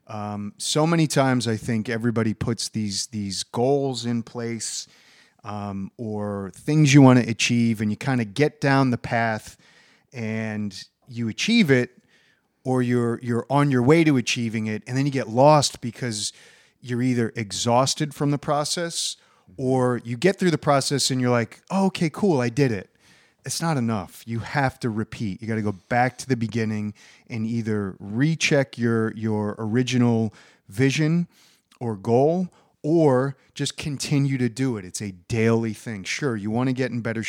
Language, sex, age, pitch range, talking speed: English, male, 30-49, 110-135 Hz, 175 wpm